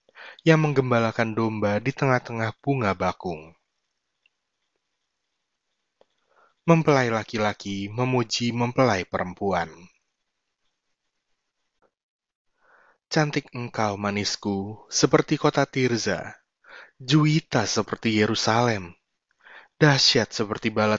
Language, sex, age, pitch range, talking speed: Indonesian, male, 20-39, 105-135 Hz, 70 wpm